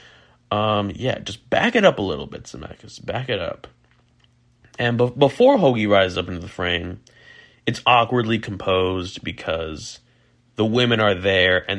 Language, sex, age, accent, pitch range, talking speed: English, male, 20-39, American, 95-125 Hz, 160 wpm